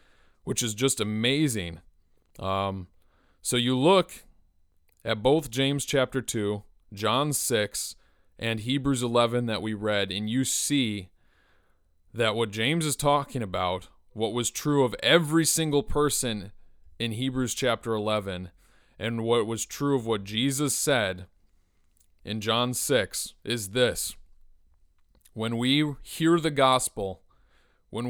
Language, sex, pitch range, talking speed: English, male, 90-125 Hz, 130 wpm